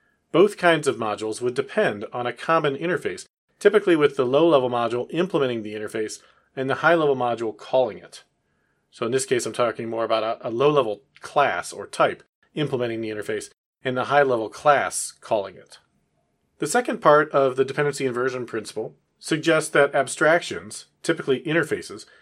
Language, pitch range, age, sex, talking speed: English, 125-180 Hz, 40-59, male, 160 wpm